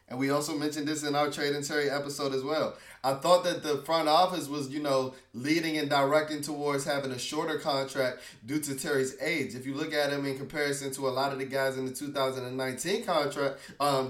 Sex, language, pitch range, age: male, English, 135-160 Hz, 20-39